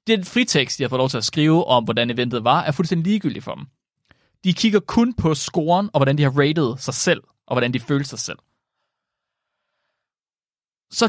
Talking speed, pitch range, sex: 200 wpm, 130-210 Hz, male